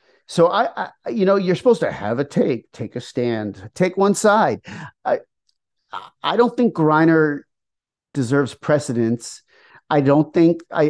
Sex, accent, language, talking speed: male, American, English, 150 wpm